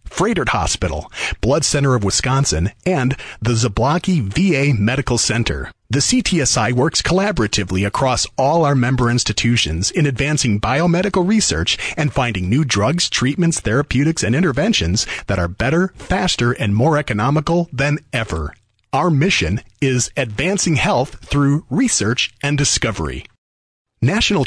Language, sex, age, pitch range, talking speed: English, male, 40-59, 105-155 Hz, 130 wpm